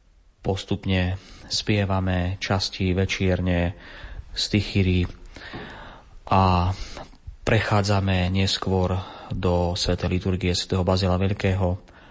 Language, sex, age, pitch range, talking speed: Slovak, male, 30-49, 90-100 Hz, 75 wpm